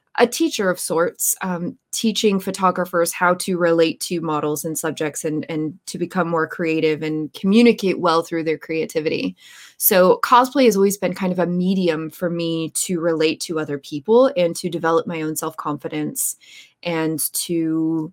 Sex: female